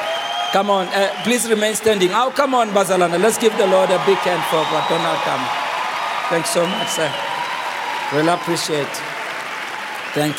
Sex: male